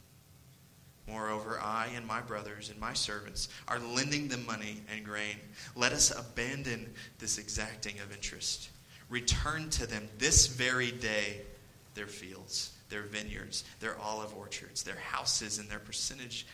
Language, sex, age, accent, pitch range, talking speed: English, male, 30-49, American, 105-120 Hz, 140 wpm